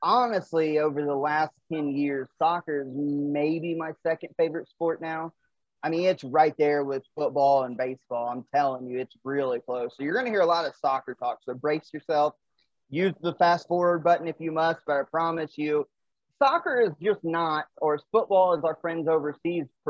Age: 30-49